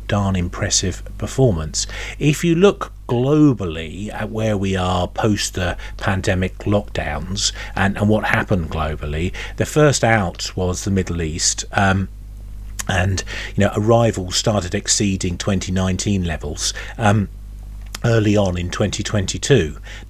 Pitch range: 95-110 Hz